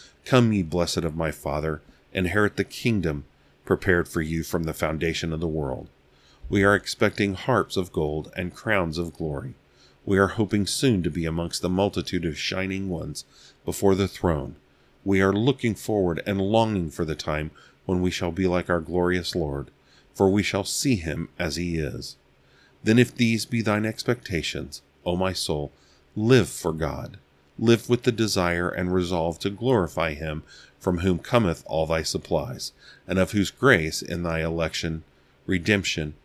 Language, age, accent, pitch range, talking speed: English, 40-59, American, 75-95 Hz, 170 wpm